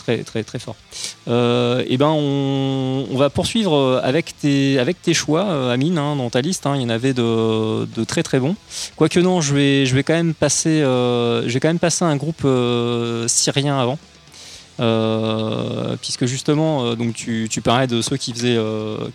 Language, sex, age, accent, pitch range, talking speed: English, male, 20-39, French, 115-140 Hz, 195 wpm